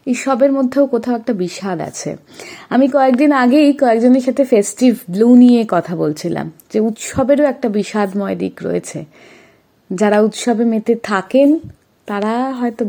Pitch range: 190-250 Hz